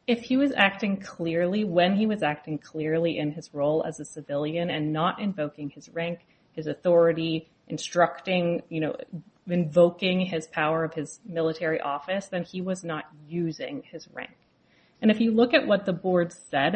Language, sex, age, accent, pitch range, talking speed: English, female, 30-49, American, 160-195 Hz, 175 wpm